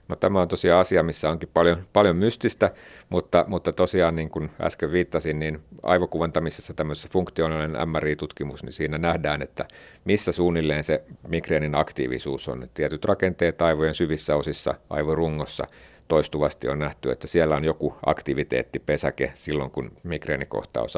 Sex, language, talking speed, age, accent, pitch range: male, Finnish, 140 wpm, 50-69, native, 70-85 Hz